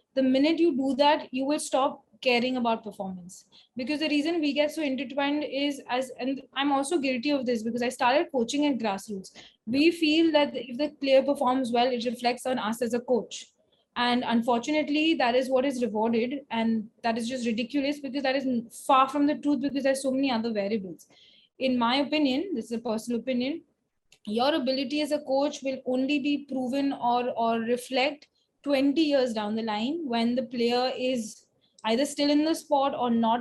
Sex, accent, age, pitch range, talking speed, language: female, Indian, 20-39, 230-280 Hz, 190 wpm, English